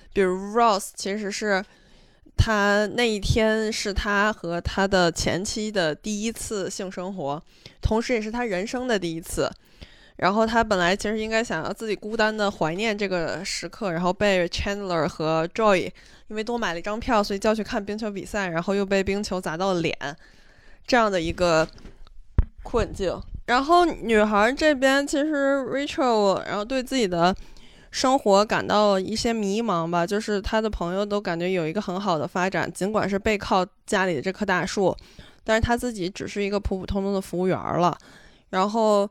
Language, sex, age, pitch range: Chinese, female, 20-39, 180-220 Hz